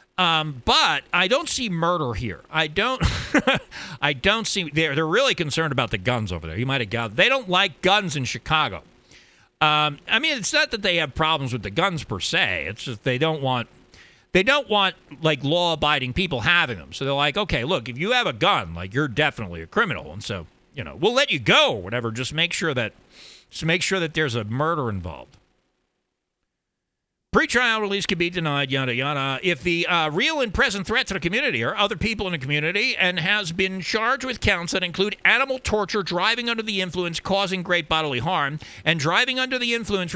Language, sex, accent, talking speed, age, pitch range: English, male, American, 210 wpm, 40-59, 135-195 Hz